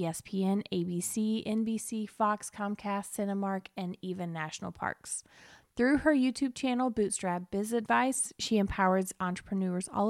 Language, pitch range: English, 180-225 Hz